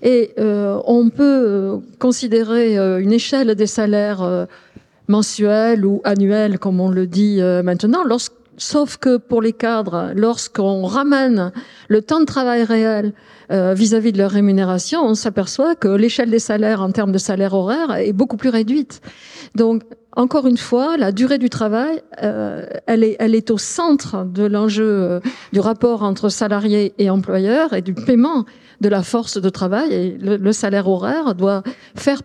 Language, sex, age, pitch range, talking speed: French, female, 50-69, 200-250 Hz, 170 wpm